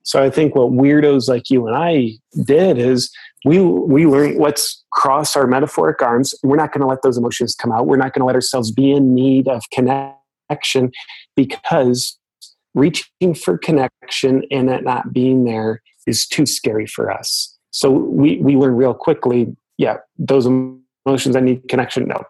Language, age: English, 30-49